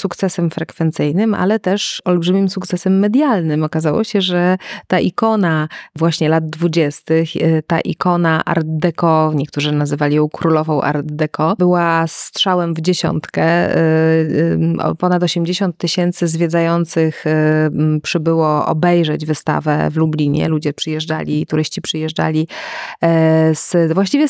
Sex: female